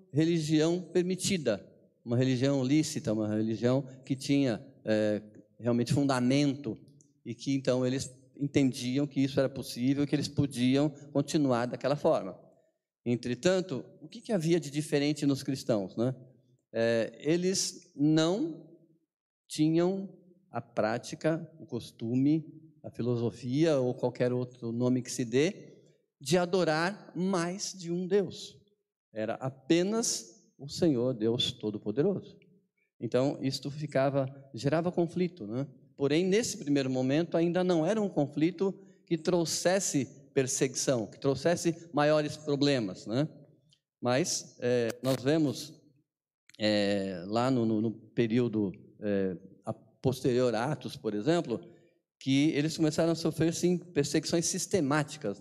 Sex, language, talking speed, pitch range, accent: male, Portuguese, 115 wpm, 125-165 Hz, Brazilian